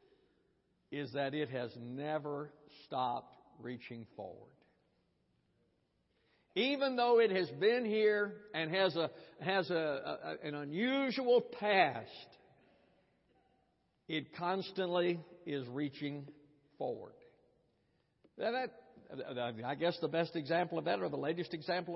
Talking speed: 110 wpm